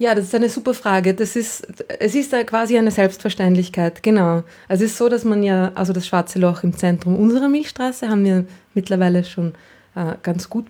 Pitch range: 185-225 Hz